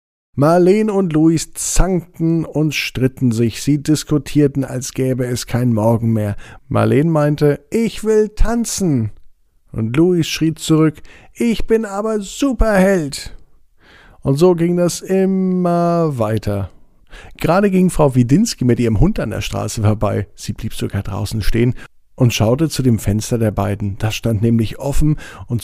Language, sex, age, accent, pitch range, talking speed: German, male, 50-69, German, 100-150 Hz, 145 wpm